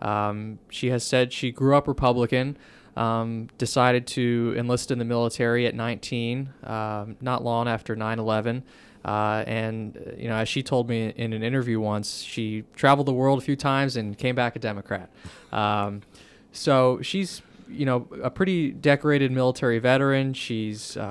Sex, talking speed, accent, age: male, 165 wpm, American, 20-39